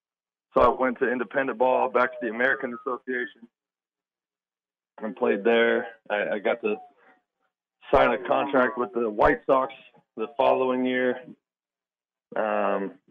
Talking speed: 135 wpm